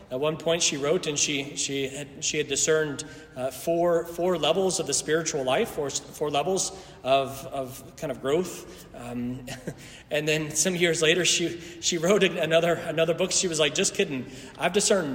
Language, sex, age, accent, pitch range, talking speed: English, male, 30-49, American, 125-160 Hz, 185 wpm